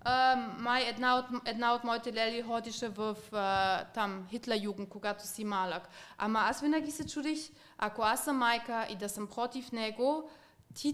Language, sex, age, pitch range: Bulgarian, female, 20-39, 230-280 Hz